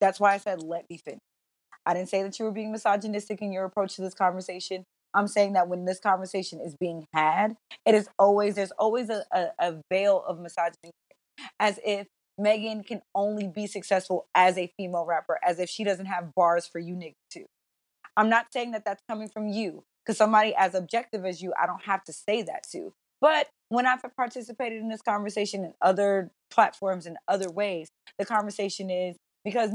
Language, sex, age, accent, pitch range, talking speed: English, female, 20-39, American, 180-225 Hz, 200 wpm